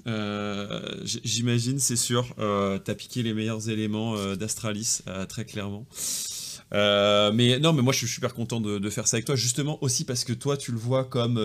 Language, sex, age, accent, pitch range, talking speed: French, male, 30-49, French, 110-135 Hz, 205 wpm